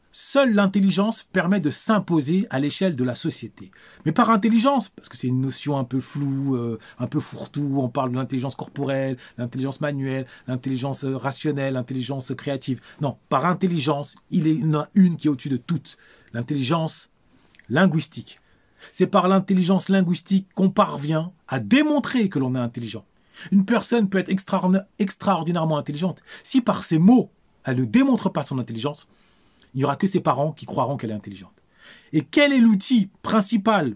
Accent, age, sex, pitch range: French, 30-49, male, 135-200 Hz